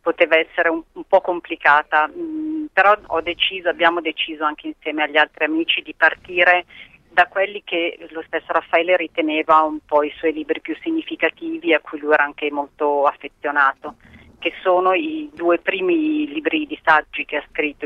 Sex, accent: female, native